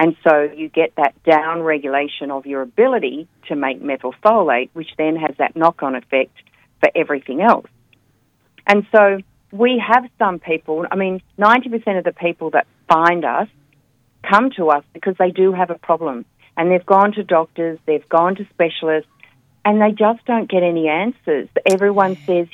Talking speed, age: 170 wpm, 40-59